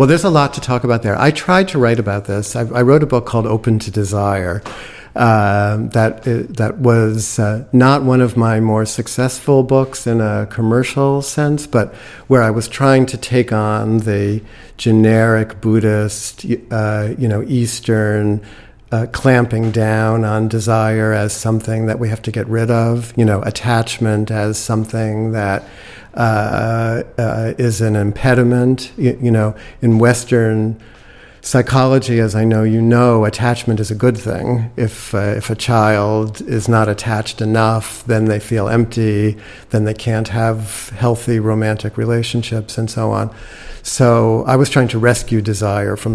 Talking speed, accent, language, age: 165 wpm, American, English, 50-69